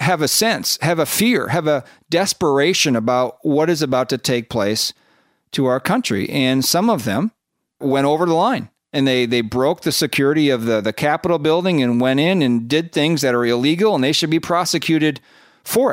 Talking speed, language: 200 wpm, English